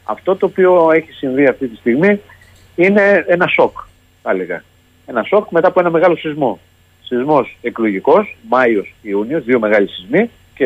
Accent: native